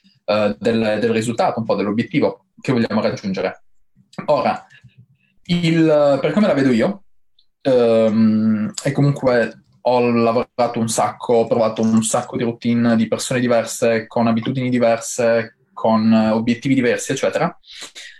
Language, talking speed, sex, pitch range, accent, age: Italian, 125 wpm, male, 110-140 Hz, native, 20-39